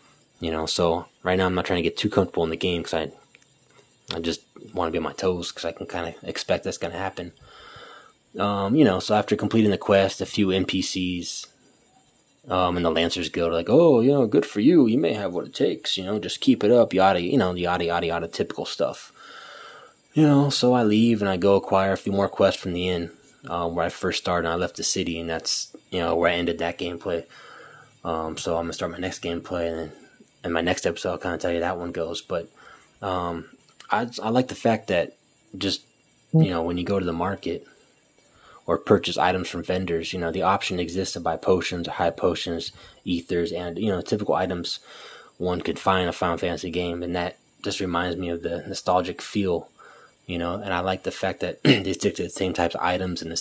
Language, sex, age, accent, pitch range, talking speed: English, male, 20-39, American, 85-95 Hz, 235 wpm